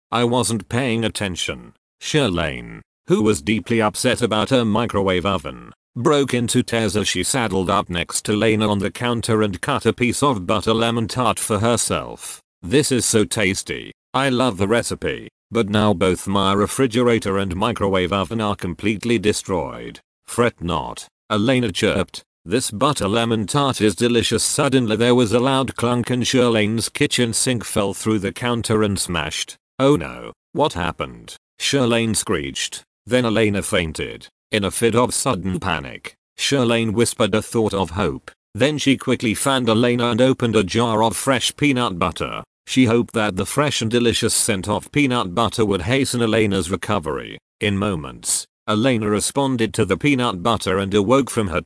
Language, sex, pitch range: English, male, 100-125 Hz